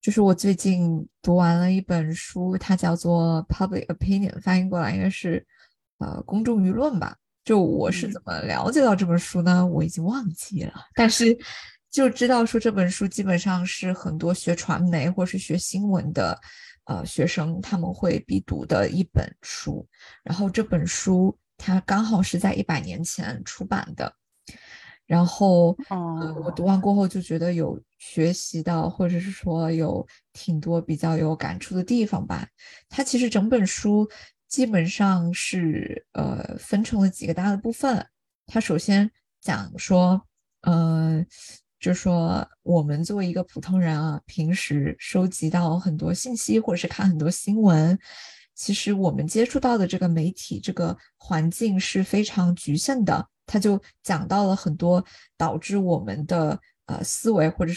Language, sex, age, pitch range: Chinese, female, 20-39, 170-200 Hz